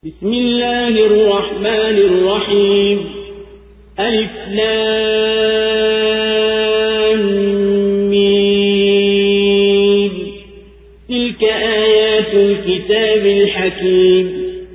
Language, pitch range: Swahili, 195-220 Hz